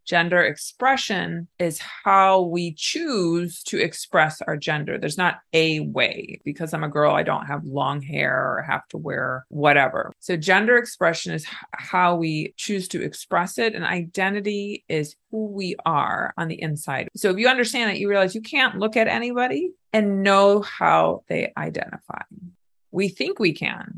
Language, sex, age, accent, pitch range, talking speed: English, female, 30-49, American, 160-220 Hz, 170 wpm